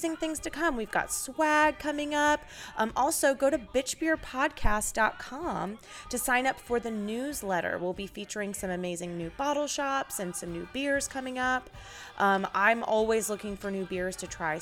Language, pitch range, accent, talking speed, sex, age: English, 190-265 Hz, American, 170 wpm, female, 20-39